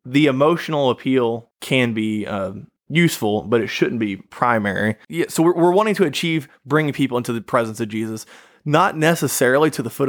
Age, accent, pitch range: 20-39, American, 115-145 Hz